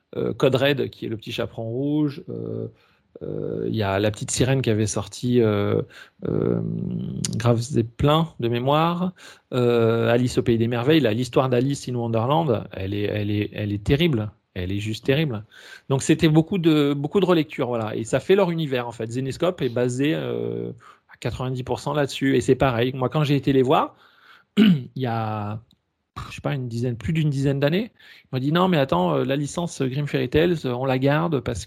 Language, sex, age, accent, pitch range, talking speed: French, male, 40-59, French, 110-145 Hz, 205 wpm